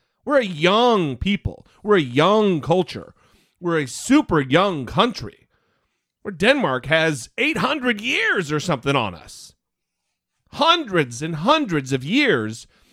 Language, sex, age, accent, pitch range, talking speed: English, male, 30-49, American, 135-205 Hz, 125 wpm